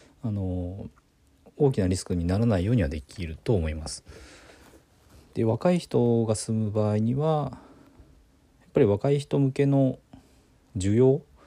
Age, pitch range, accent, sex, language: 40-59, 80-110 Hz, native, male, Japanese